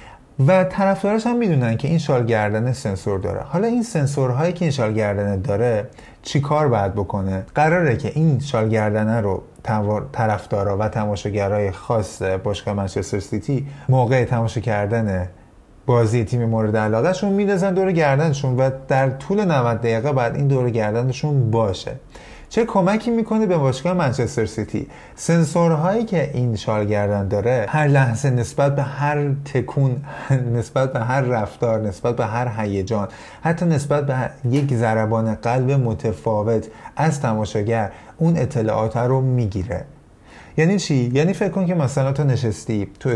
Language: Persian